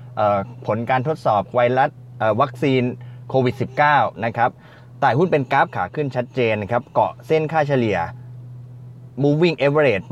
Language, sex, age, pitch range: Thai, male, 20-39, 115-140 Hz